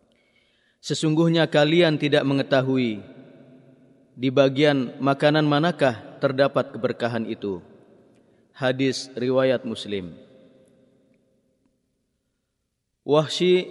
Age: 30-49